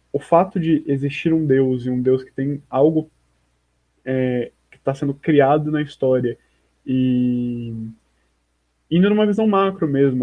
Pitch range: 125-160 Hz